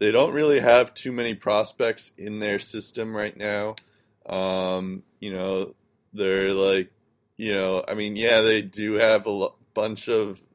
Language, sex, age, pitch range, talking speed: English, male, 20-39, 95-115 Hz, 160 wpm